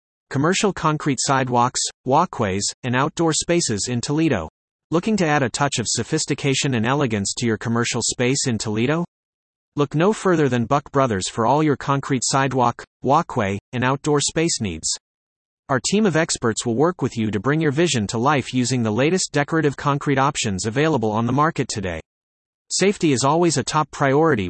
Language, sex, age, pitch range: English, male, 30-49, 115-150 Hz